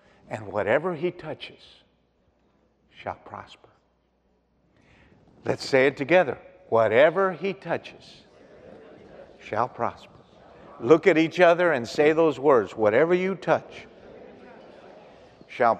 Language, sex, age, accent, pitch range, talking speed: English, male, 50-69, American, 150-255 Hz, 105 wpm